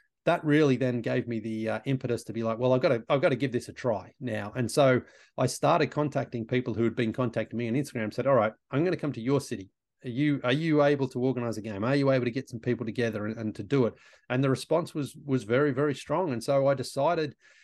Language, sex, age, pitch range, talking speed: English, male, 30-49, 115-140 Hz, 270 wpm